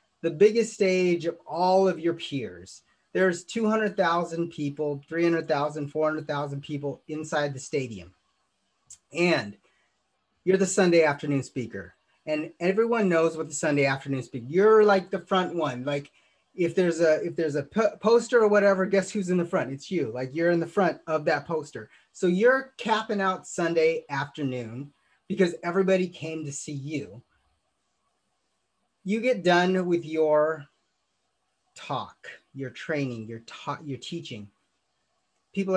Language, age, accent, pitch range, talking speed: English, 30-49, American, 140-180 Hz, 145 wpm